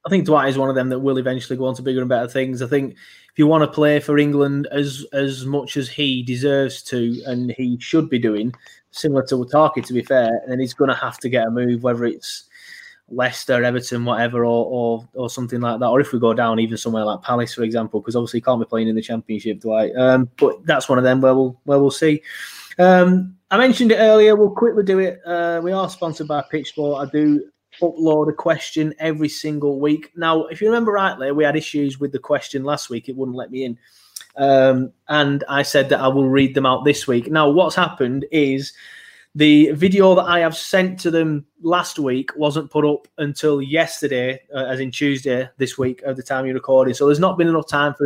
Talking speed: 235 wpm